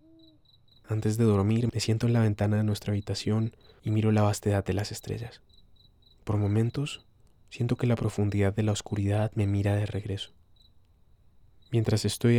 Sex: male